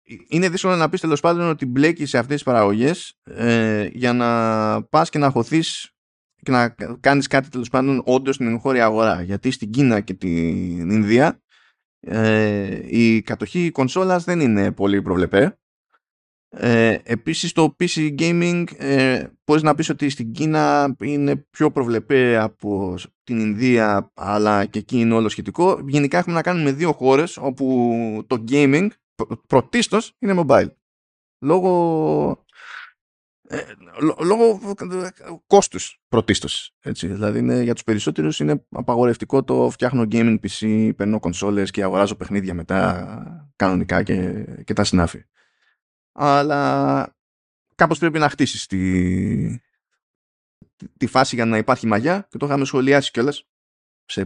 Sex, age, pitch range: male, 20-39, 105-145 Hz